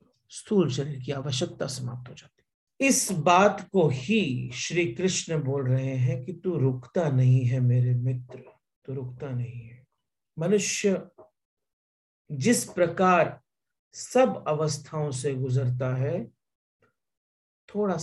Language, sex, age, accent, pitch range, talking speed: English, male, 50-69, Indian, 130-185 Hz, 125 wpm